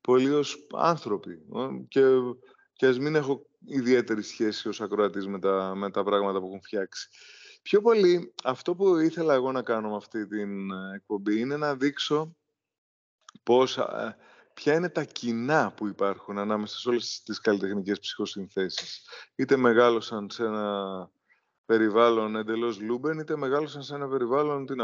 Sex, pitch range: male, 110-150 Hz